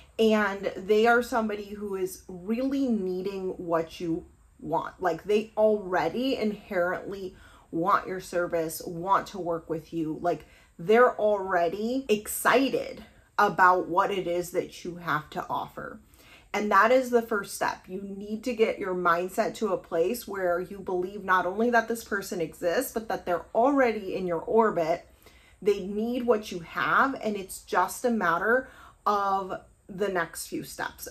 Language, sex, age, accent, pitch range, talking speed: English, female, 30-49, American, 180-225 Hz, 160 wpm